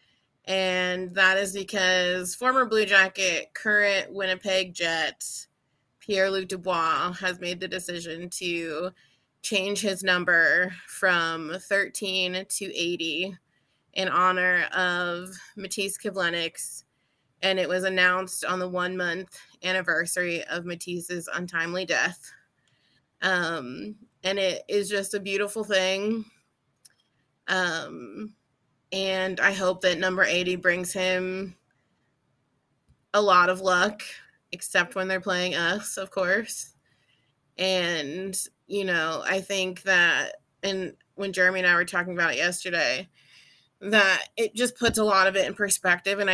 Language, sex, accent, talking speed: English, female, American, 125 wpm